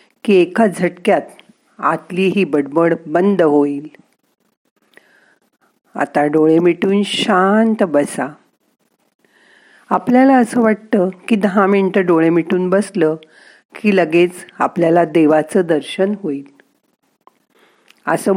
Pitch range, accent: 160-205 Hz, native